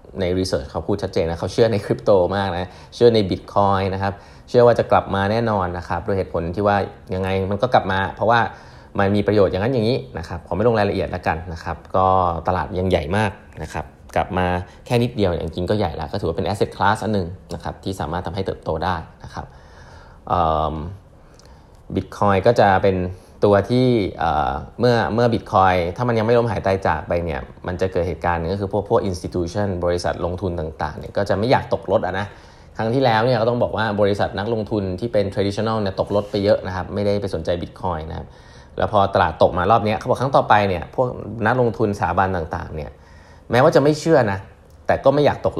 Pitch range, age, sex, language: 85-105 Hz, 20-39, male, Thai